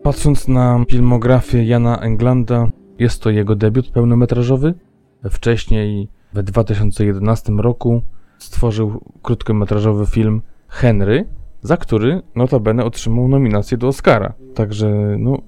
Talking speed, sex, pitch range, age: 105 wpm, male, 105-125 Hz, 20-39